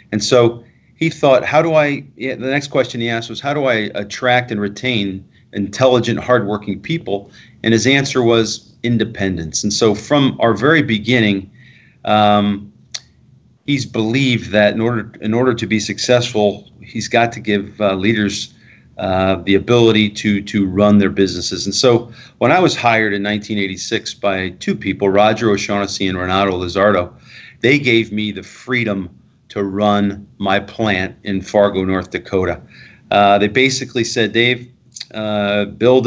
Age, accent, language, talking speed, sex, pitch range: 40-59, American, English, 160 wpm, male, 100-125 Hz